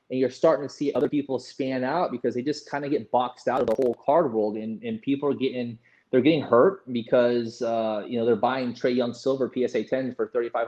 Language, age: English, 20-39